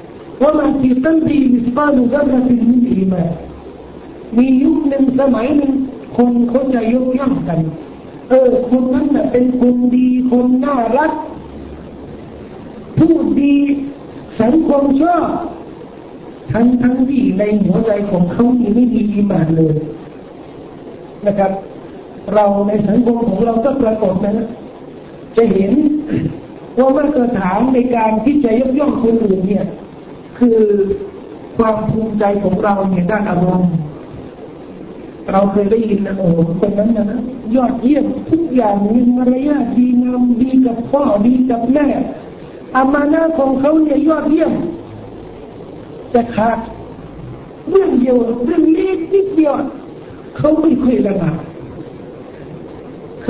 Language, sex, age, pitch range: Thai, male, 60-79, 220-285 Hz